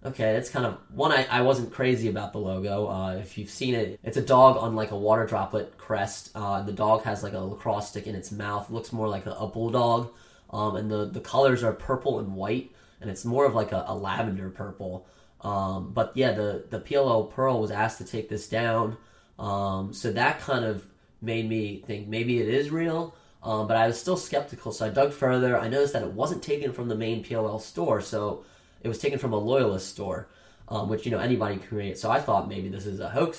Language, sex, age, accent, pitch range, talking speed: English, male, 10-29, American, 105-120 Hz, 235 wpm